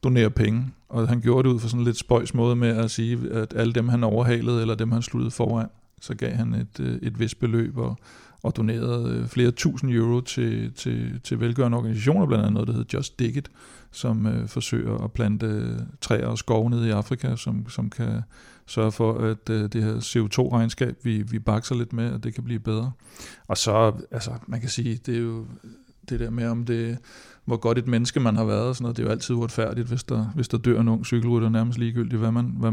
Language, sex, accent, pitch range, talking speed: Danish, male, native, 110-125 Hz, 220 wpm